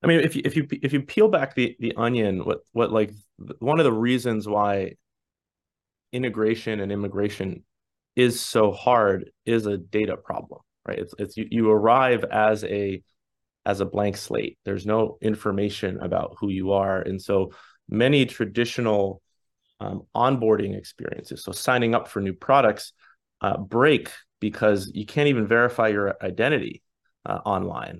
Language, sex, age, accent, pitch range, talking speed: English, male, 30-49, American, 100-115 Hz, 160 wpm